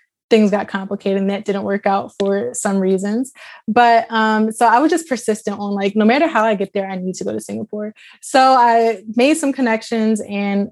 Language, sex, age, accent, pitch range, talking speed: English, female, 20-39, American, 200-230 Hz, 215 wpm